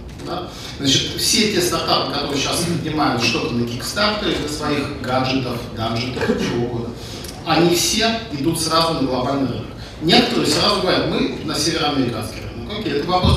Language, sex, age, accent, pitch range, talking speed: Russian, male, 40-59, native, 120-170 Hz, 135 wpm